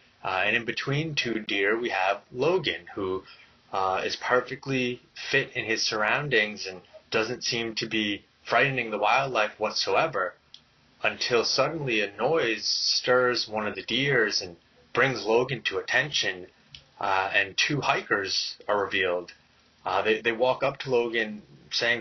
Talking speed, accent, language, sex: 145 wpm, American, English, male